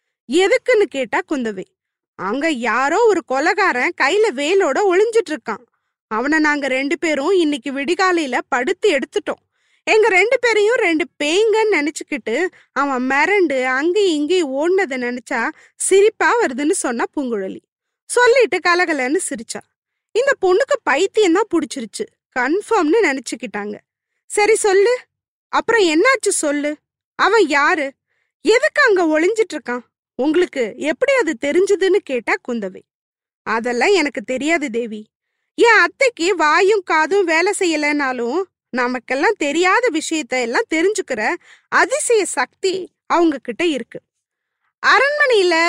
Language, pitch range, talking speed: Tamil, 280-400 Hz, 75 wpm